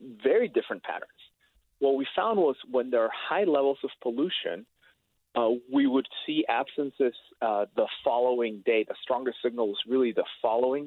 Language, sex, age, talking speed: English, male, 30-49, 165 wpm